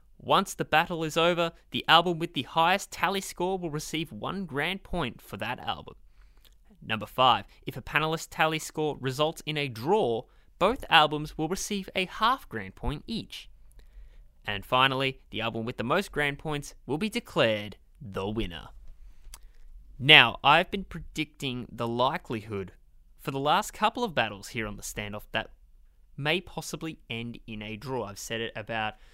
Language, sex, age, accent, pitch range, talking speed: English, male, 20-39, Australian, 100-150 Hz, 165 wpm